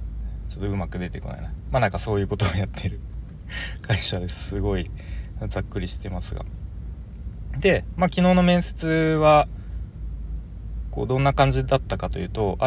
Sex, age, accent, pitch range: male, 20-39, native, 90-135 Hz